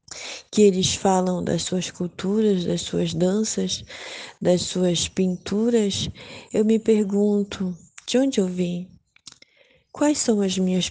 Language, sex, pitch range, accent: Portuguese, female, 190-225 Hz, Brazilian